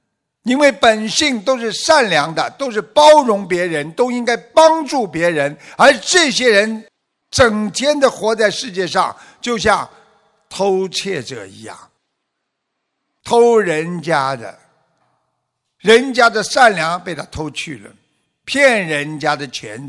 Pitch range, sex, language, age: 175-240 Hz, male, Chinese, 60-79